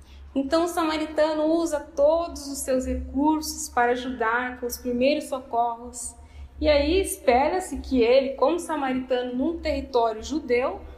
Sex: female